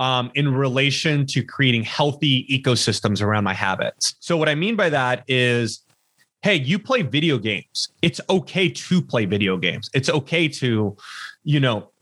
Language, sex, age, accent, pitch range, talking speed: English, male, 30-49, American, 120-155 Hz, 165 wpm